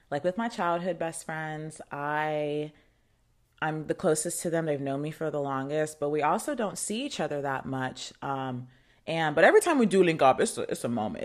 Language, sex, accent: English, female, American